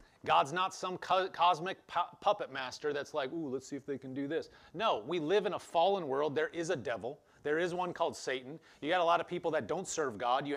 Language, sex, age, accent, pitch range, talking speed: English, male, 30-49, American, 150-190 Hz, 245 wpm